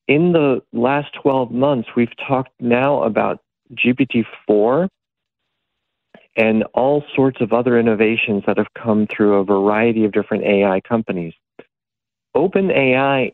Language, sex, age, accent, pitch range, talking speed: English, male, 40-59, American, 105-135 Hz, 120 wpm